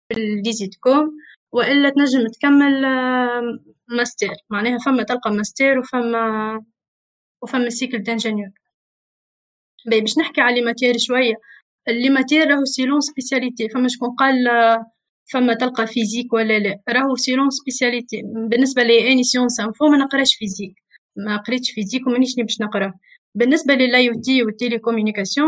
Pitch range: 220-260 Hz